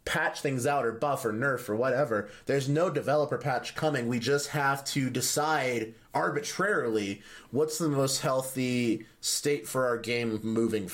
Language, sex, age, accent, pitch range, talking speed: English, male, 30-49, American, 115-155 Hz, 160 wpm